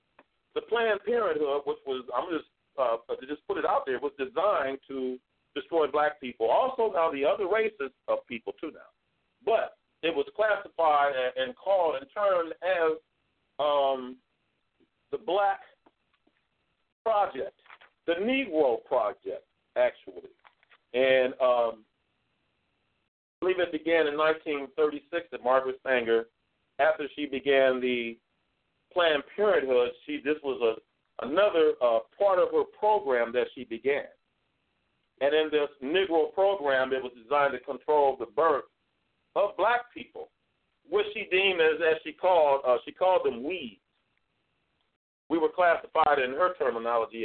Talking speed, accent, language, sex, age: 140 wpm, American, English, male, 50-69